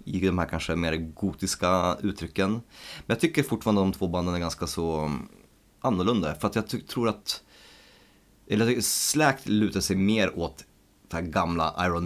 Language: Swedish